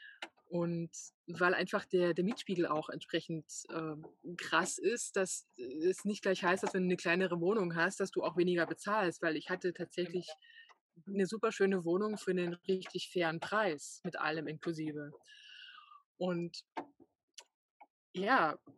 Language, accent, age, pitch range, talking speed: German, German, 20-39, 175-215 Hz, 145 wpm